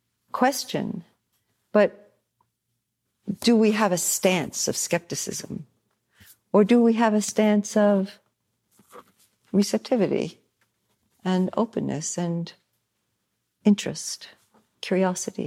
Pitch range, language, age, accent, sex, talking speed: 155-200 Hz, English, 50-69, American, female, 85 wpm